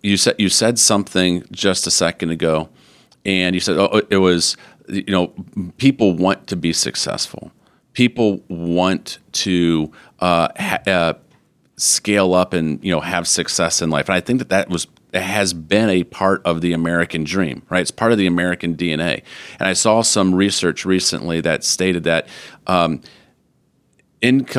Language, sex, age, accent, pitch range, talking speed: English, male, 40-59, American, 85-100 Hz, 170 wpm